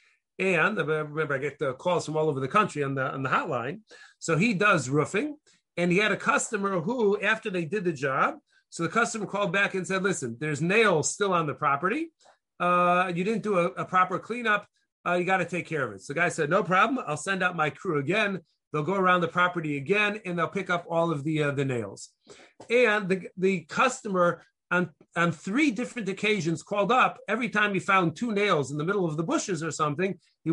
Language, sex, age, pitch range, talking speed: English, male, 40-59, 165-210 Hz, 230 wpm